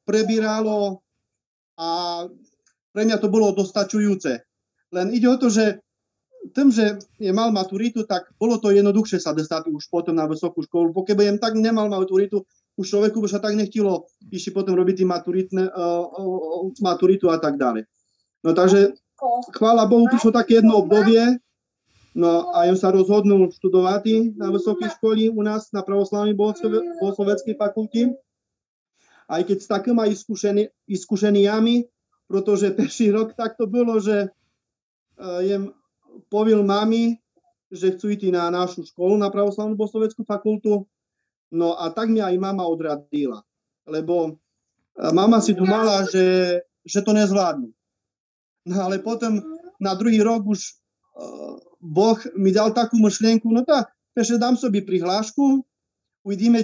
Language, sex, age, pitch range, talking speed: Slovak, male, 30-49, 185-220 Hz, 135 wpm